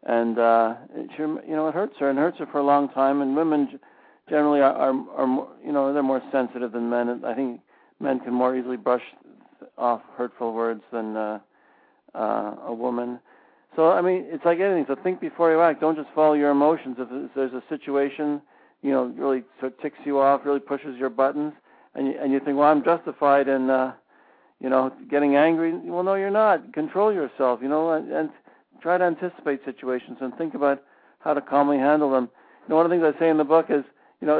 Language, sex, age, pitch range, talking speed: English, male, 60-79, 130-160 Hz, 220 wpm